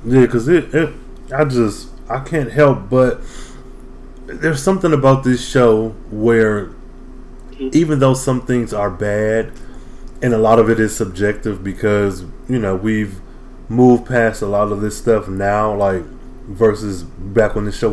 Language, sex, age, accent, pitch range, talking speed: English, male, 20-39, American, 110-130 Hz, 150 wpm